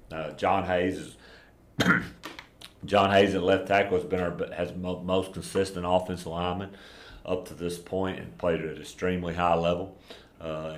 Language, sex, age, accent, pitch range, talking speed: English, male, 40-59, American, 80-90 Hz, 165 wpm